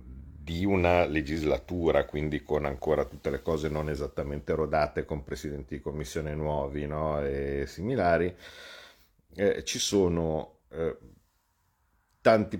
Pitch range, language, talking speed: 75-95 Hz, Italian, 120 wpm